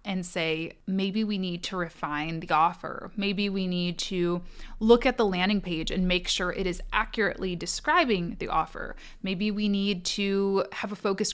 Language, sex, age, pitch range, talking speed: English, female, 20-39, 180-225 Hz, 180 wpm